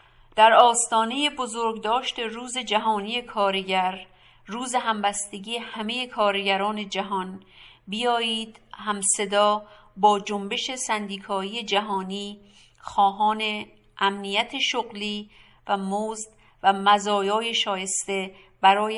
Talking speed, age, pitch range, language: 85 wpm, 50-69, 195-220 Hz, English